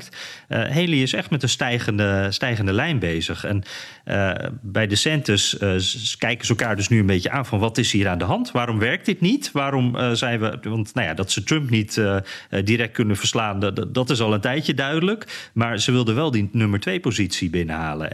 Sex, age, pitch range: male, 40-59, 100-130 Hz